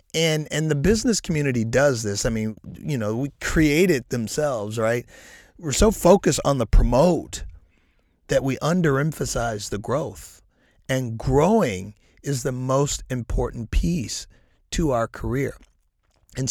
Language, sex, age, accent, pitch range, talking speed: English, male, 40-59, American, 105-145 Hz, 140 wpm